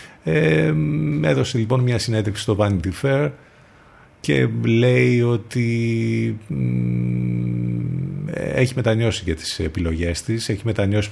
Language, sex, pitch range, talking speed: Greek, male, 90-120 Hz, 110 wpm